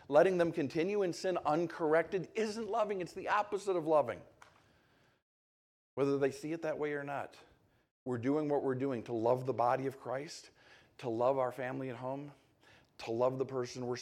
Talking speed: 185 wpm